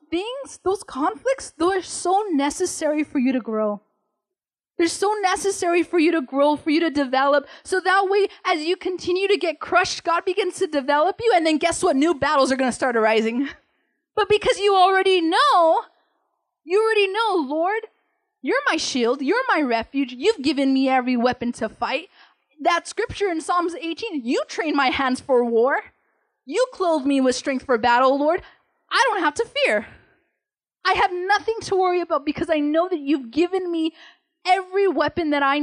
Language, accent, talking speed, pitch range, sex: English, American, 185 wpm, 270-370 Hz, female